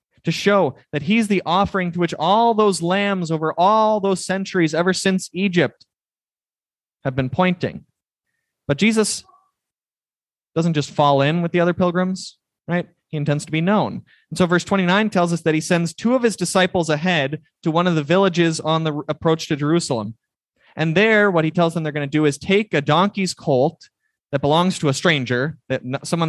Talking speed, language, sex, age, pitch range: 190 wpm, English, male, 20-39, 145-185 Hz